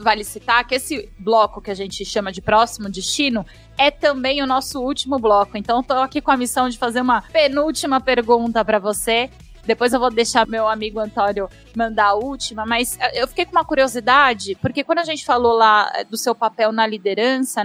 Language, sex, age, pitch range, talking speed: Portuguese, female, 20-39, 225-300 Hz, 195 wpm